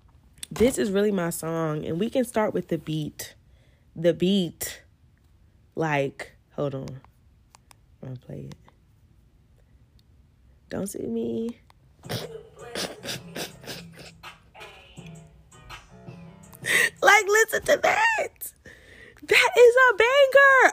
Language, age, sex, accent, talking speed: English, 10-29, female, American, 95 wpm